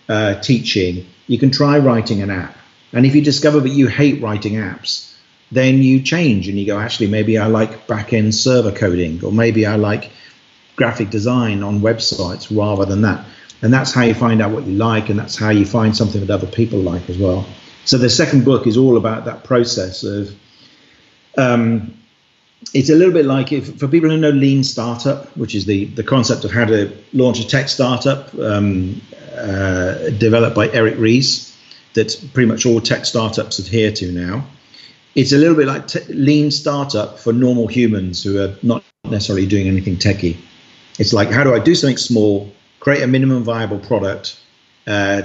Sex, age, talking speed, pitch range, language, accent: male, 50-69, 190 wpm, 100-130 Hz, English, British